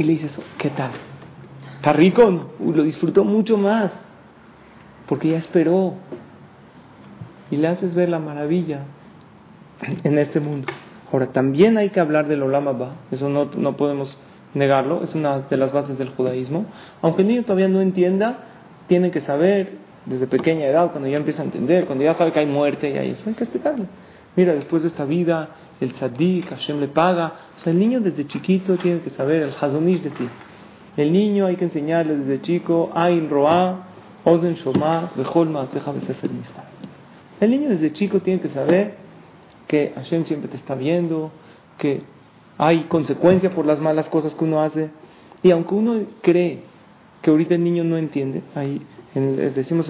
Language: Spanish